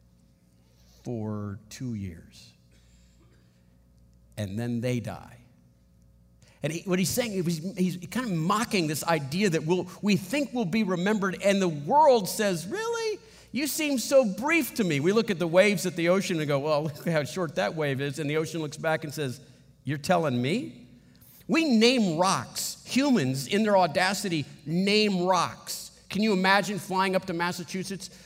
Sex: male